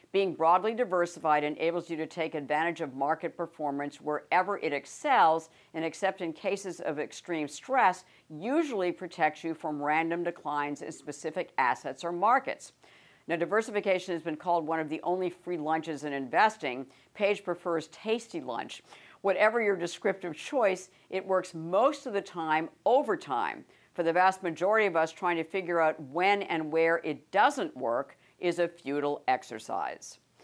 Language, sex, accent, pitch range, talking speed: English, female, American, 160-200 Hz, 160 wpm